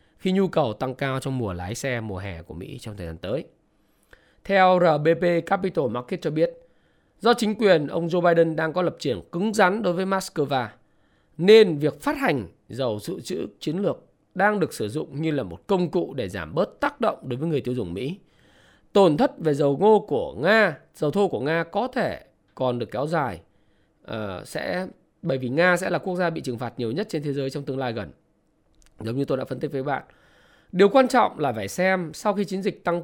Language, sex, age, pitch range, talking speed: Vietnamese, male, 20-39, 130-190 Hz, 225 wpm